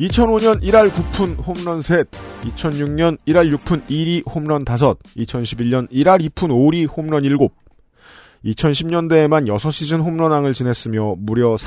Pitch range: 120-165 Hz